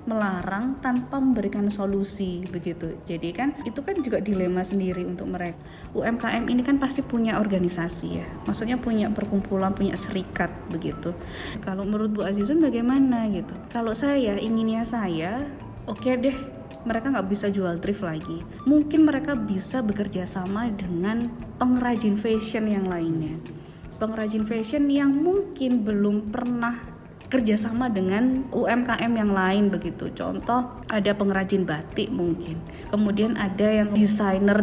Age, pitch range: 20-39, 185-235 Hz